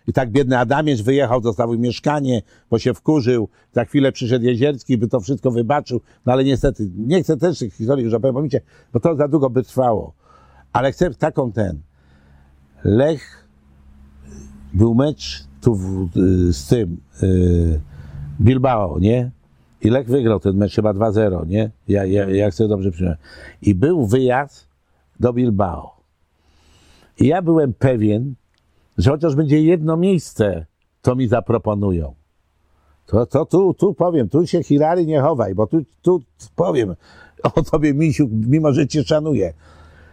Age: 50-69